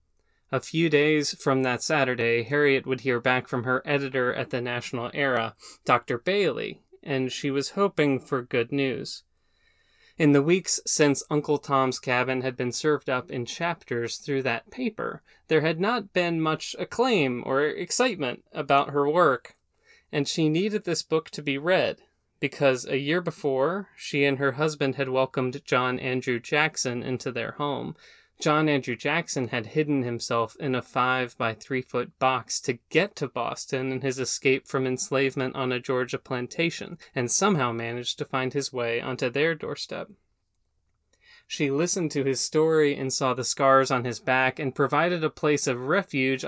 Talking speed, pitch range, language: 165 wpm, 125-155 Hz, English